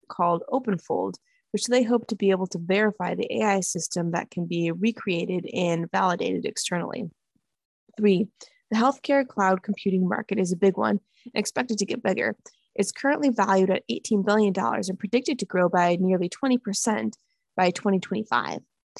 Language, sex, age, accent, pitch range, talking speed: English, female, 20-39, American, 185-230 Hz, 155 wpm